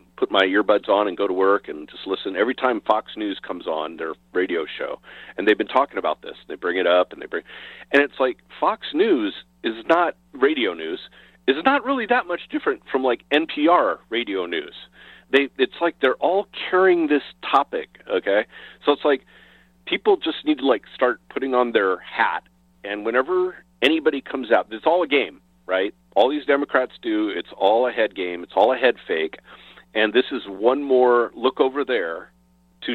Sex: male